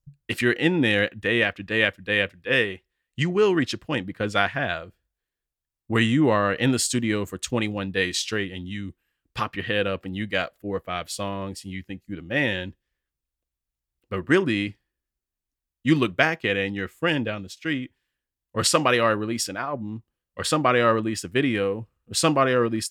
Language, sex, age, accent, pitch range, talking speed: English, male, 30-49, American, 95-120 Hz, 200 wpm